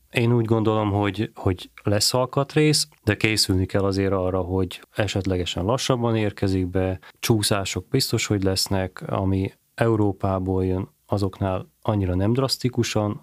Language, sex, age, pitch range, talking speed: Hungarian, male, 30-49, 95-110 Hz, 125 wpm